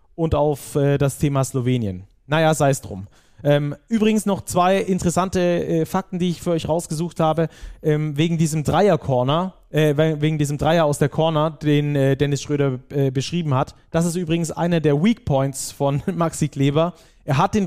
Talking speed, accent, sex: 180 wpm, German, male